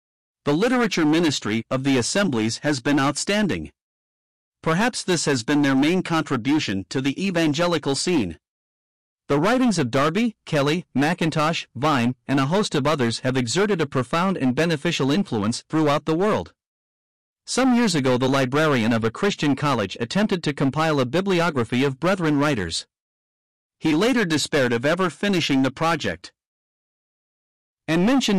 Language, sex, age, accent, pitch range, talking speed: English, male, 50-69, American, 130-175 Hz, 145 wpm